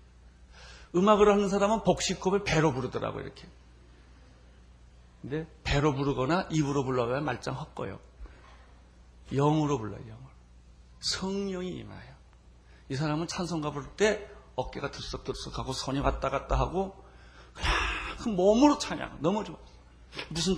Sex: male